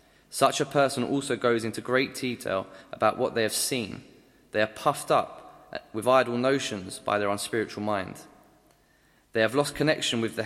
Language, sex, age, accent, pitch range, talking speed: English, male, 20-39, British, 110-135 Hz, 170 wpm